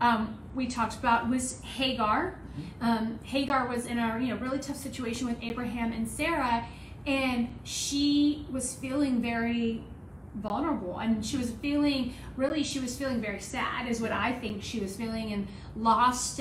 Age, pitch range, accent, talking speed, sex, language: 30-49, 230-270 Hz, American, 170 wpm, female, English